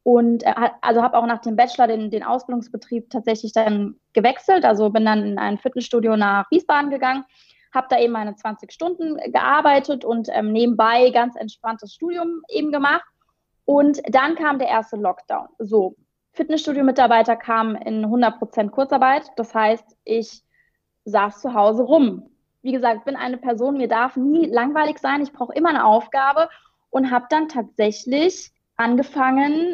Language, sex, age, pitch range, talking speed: German, female, 20-39, 225-285 Hz, 155 wpm